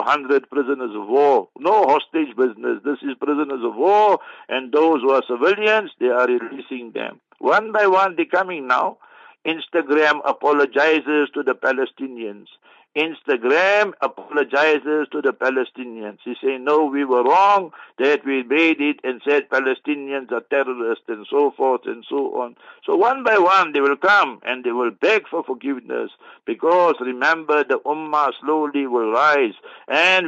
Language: English